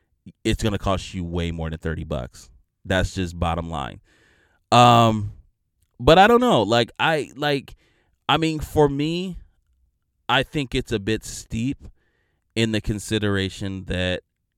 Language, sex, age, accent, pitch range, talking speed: English, male, 30-49, American, 85-115 Hz, 150 wpm